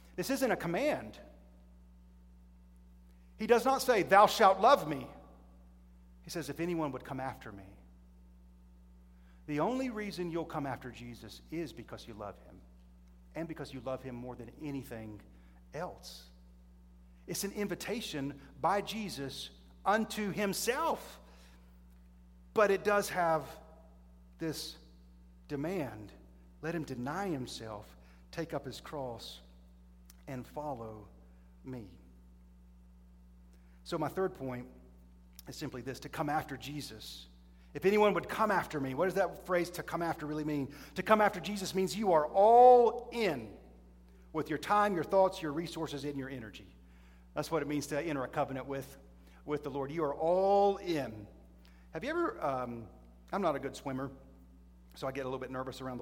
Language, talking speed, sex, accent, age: English, 155 wpm, male, American, 40-59